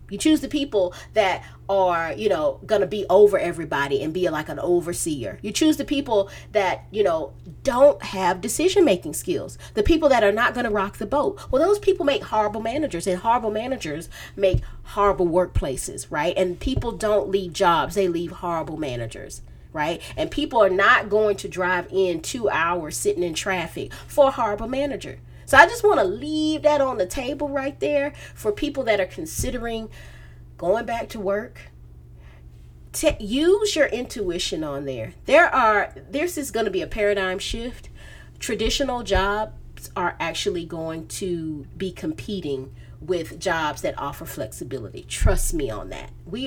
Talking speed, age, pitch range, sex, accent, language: 175 wpm, 40-59, 170-270 Hz, female, American, English